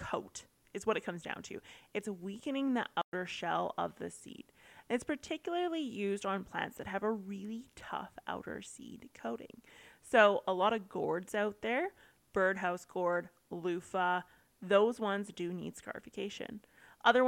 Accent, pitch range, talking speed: American, 180-230 Hz, 155 wpm